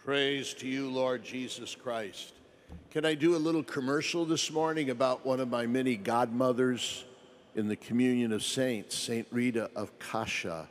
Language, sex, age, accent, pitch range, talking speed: English, male, 60-79, American, 105-130 Hz, 160 wpm